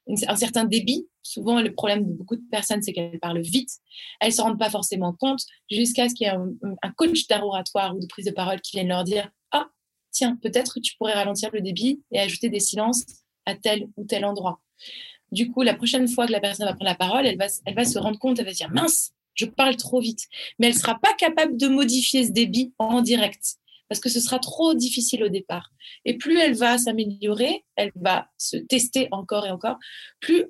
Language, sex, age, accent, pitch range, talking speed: French, female, 20-39, French, 205-255 Hz, 240 wpm